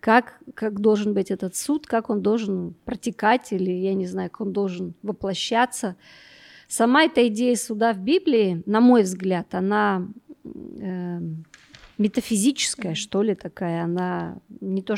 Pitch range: 190-235 Hz